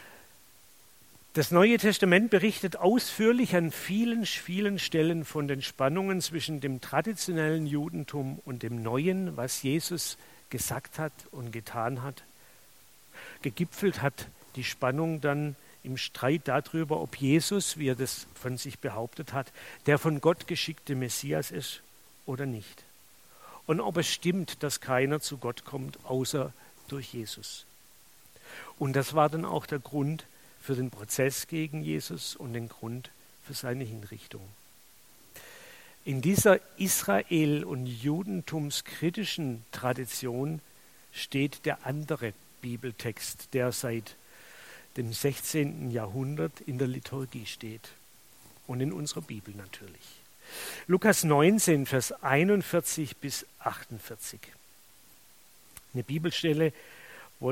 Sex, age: male, 50-69